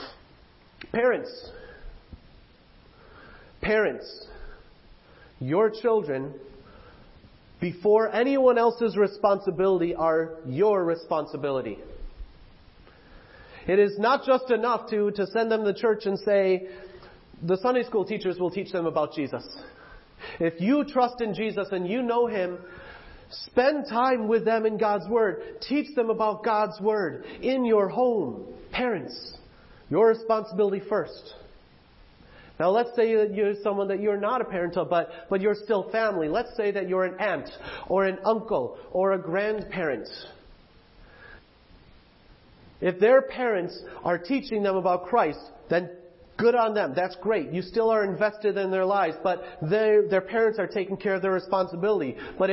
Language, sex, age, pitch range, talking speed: English, male, 40-59, 185-230 Hz, 140 wpm